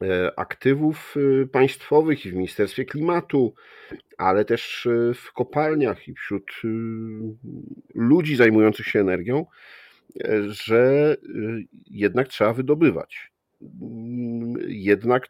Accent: native